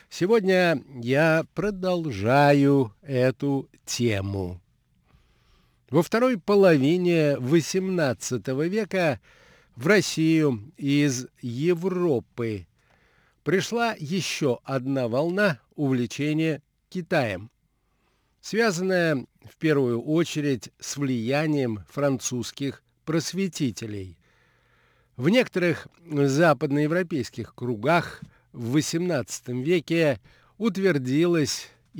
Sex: male